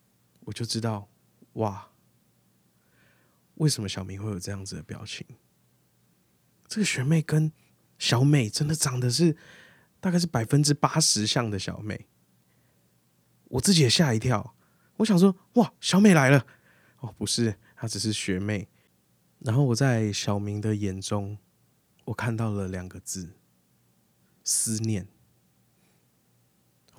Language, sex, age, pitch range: Chinese, male, 20-39, 95-135 Hz